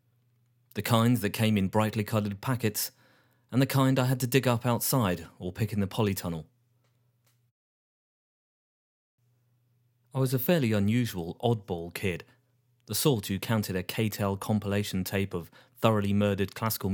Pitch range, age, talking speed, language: 105-125 Hz, 30-49, 145 wpm, English